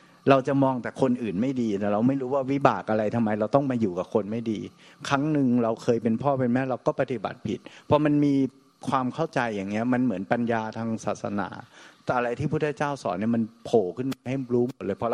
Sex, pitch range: male, 110-135 Hz